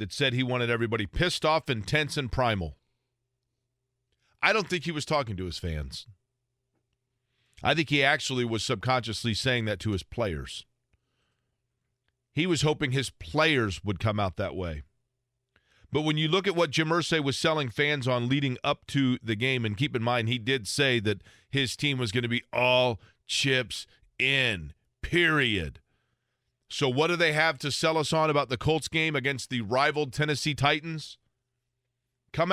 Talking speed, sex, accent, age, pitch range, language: 175 wpm, male, American, 40-59, 120-150 Hz, English